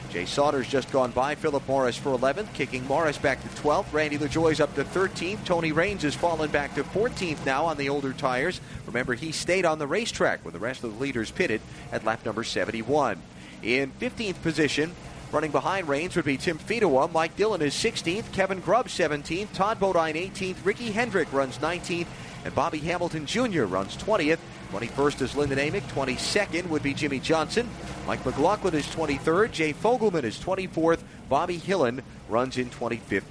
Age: 30-49